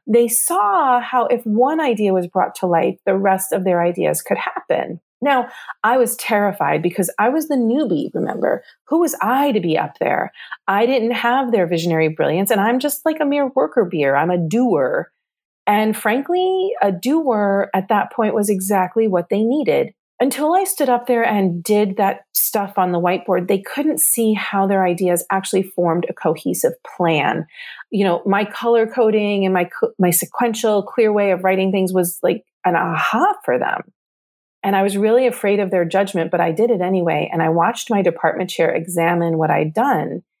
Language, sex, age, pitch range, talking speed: English, female, 30-49, 180-245 Hz, 190 wpm